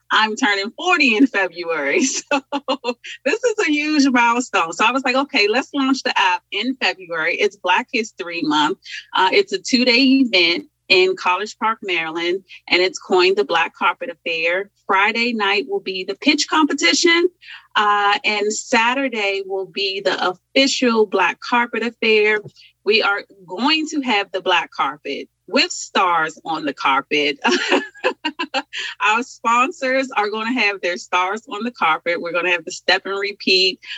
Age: 30-49